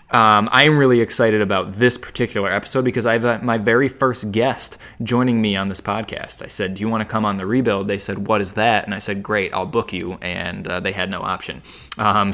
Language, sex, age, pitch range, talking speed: English, male, 20-39, 100-120 Hz, 245 wpm